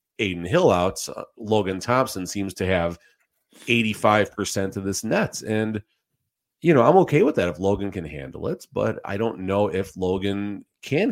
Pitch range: 85-110 Hz